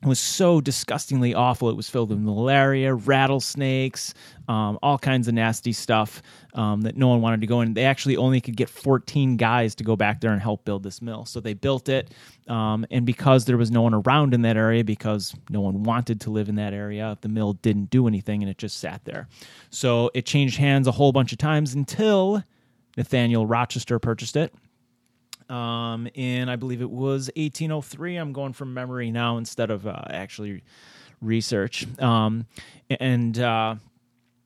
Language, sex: English, male